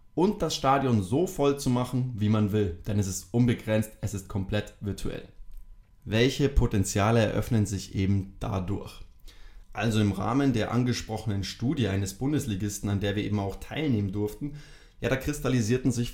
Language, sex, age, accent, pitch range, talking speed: German, male, 20-39, German, 100-125 Hz, 160 wpm